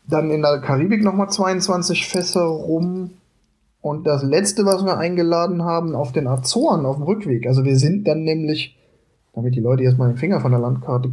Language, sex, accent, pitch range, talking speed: German, male, German, 130-170 Hz, 190 wpm